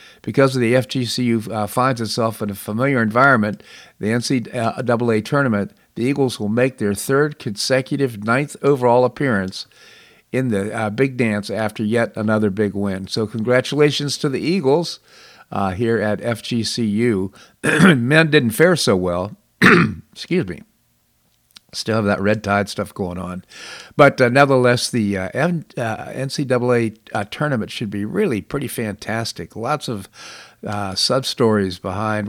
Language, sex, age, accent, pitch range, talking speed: English, male, 50-69, American, 110-135 Hz, 145 wpm